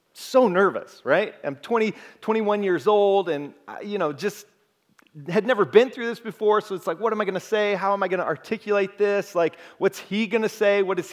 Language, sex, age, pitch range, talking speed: English, male, 30-49, 160-215 Hz, 225 wpm